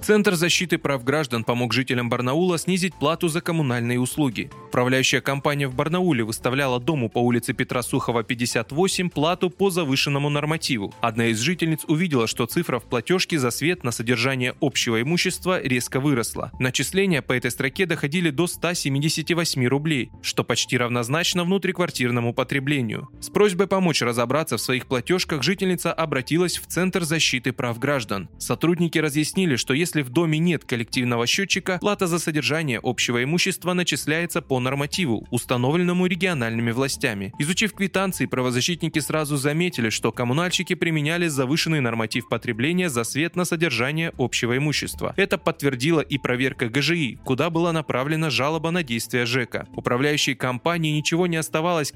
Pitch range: 125-170 Hz